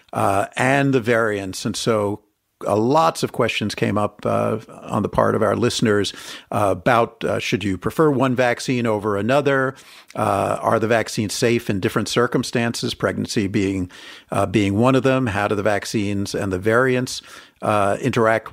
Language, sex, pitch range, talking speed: English, male, 105-125 Hz, 170 wpm